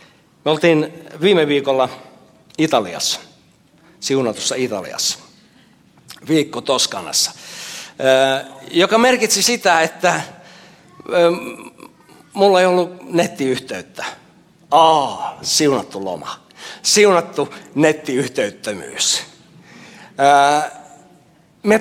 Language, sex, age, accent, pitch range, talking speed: Finnish, male, 60-79, native, 145-185 Hz, 65 wpm